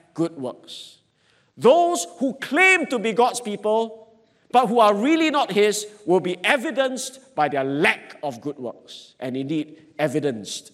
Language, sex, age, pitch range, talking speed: English, male, 50-69, 150-235 Hz, 150 wpm